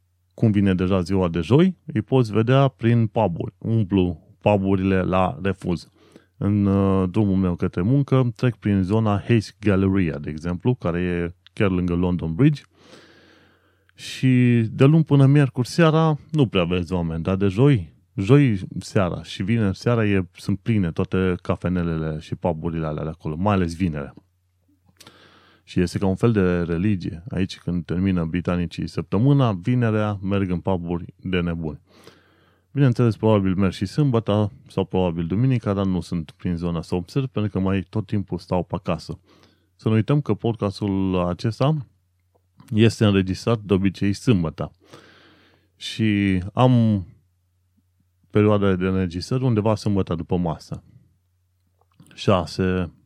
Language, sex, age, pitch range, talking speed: Romanian, male, 30-49, 90-115 Hz, 145 wpm